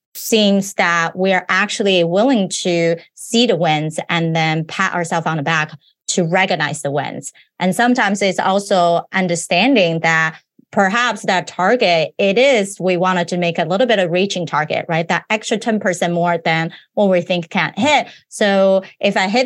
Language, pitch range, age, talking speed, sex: English, 170-205 Hz, 30-49, 175 wpm, female